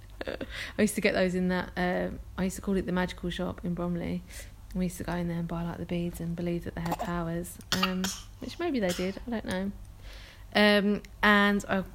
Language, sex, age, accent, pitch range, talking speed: English, female, 30-49, British, 175-205 Hz, 225 wpm